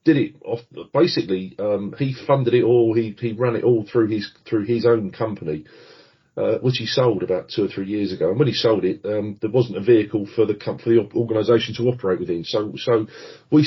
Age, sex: 40-59, male